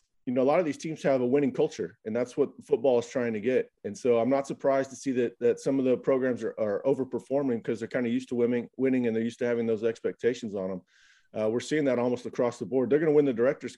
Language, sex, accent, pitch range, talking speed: English, male, American, 110-130 Hz, 290 wpm